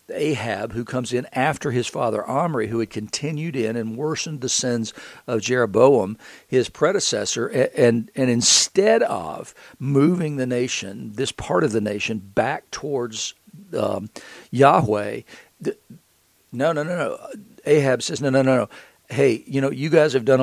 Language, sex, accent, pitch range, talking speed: English, male, American, 115-150 Hz, 160 wpm